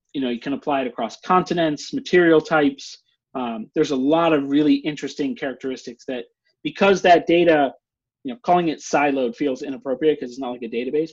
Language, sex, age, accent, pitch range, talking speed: English, male, 30-49, American, 130-175 Hz, 190 wpm